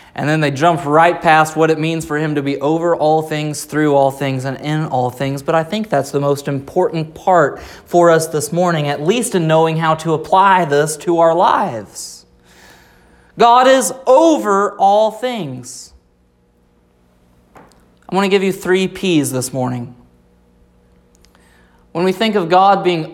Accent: American